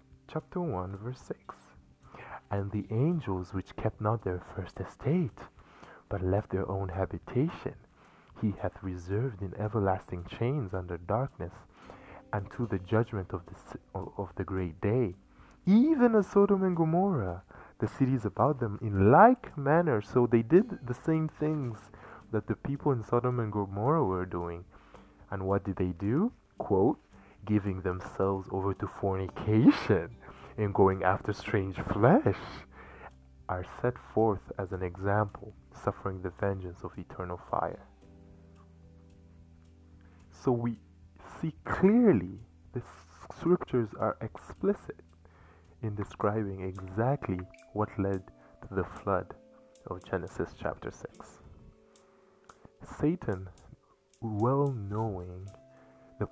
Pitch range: 90-120 Hz